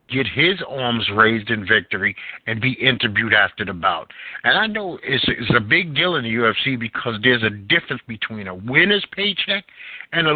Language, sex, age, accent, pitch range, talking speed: English, male, 50-69, American, 115-145 Hz, 190 wpm